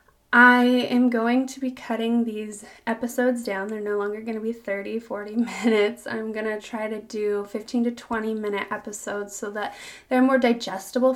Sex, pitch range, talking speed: female, 215-260 Hz, 185 wpm